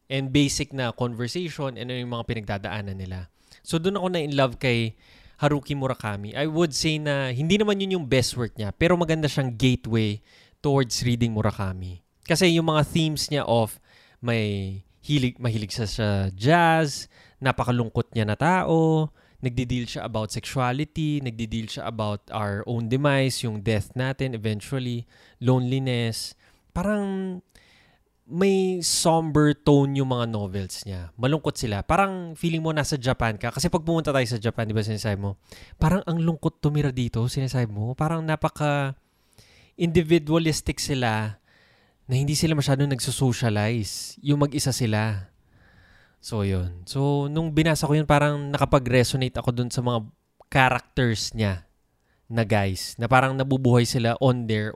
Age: 20-39